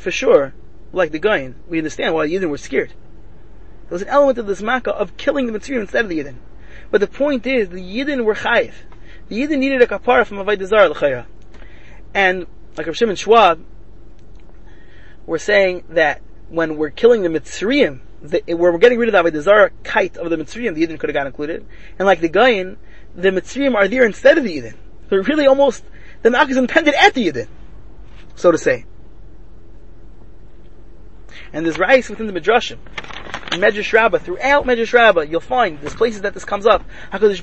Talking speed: 190 wpm